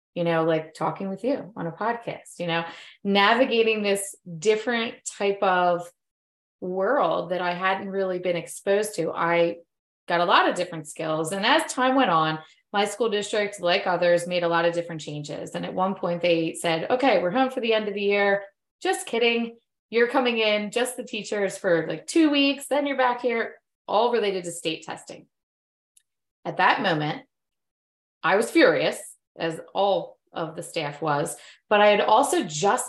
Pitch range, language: 170-220 Hz, English